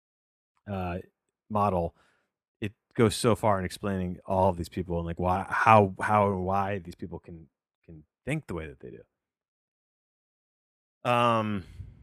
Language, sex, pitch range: English, male, 95-125 Hz